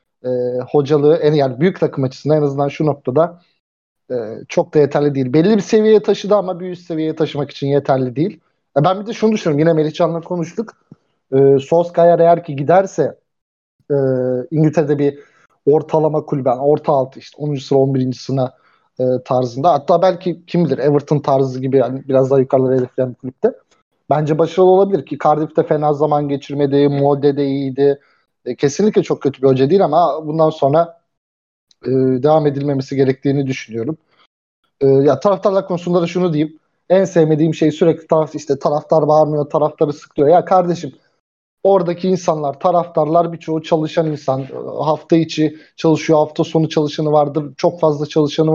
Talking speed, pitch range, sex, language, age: 160 wpm, 140-170 Hz, male, Turkish, 30-49